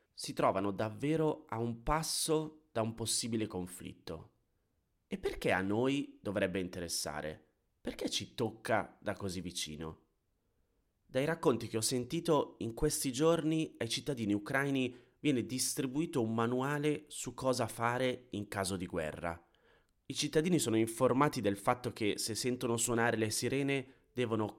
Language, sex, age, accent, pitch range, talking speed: Italian, male, 30-49, native, 95-125 Hz, 140 wpm